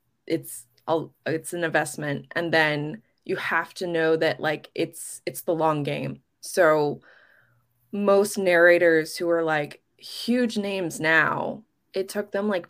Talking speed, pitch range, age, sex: 145 wpm, 160-205 Hz, 20-39, female